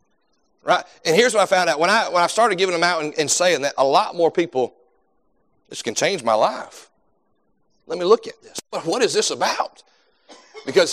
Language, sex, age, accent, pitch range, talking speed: English, male, 40-59, American, 160-195 Hz, 210 wpm